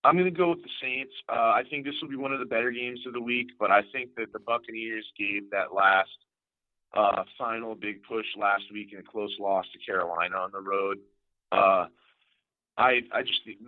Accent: American